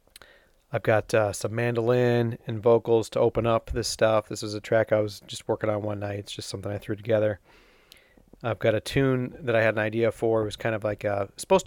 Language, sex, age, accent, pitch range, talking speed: English, male, 40-59, American, 105-115 Hz, 230 wpm